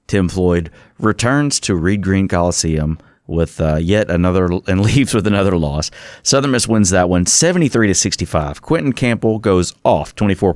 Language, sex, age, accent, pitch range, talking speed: English, male, 30-49, American, 85-110 Hz, 165 wpm